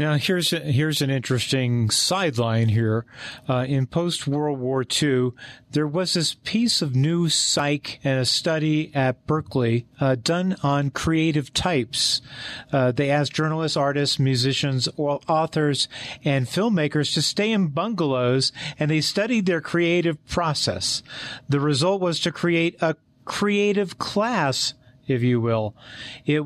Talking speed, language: 140 wpm, English